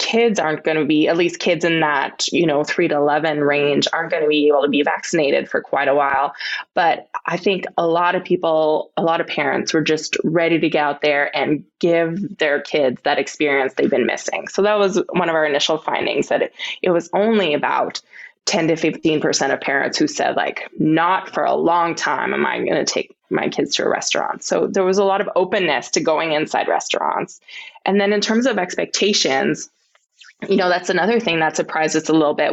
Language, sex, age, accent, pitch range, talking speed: English, female, 20-39, American, 160-200 Hz, 215 wpm